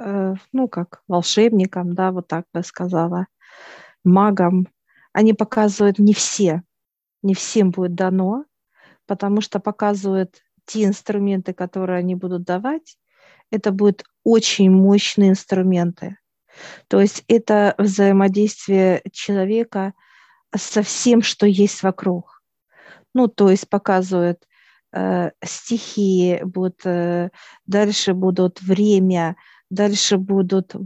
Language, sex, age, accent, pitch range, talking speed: Russian, female, 40-59, native, 185-210 Hz, 105 wpm